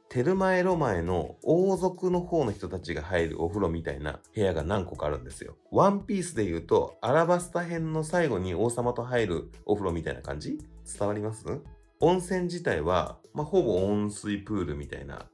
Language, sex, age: Japanese, male, 30-49